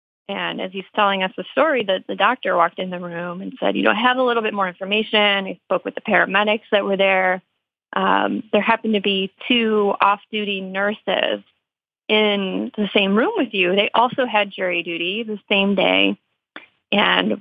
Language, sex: English, female